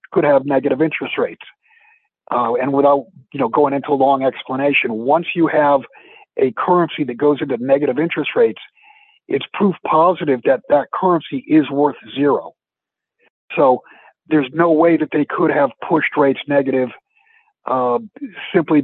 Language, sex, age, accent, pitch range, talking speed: English, male, 50-69, American, 135-205 Hz, 150 wpm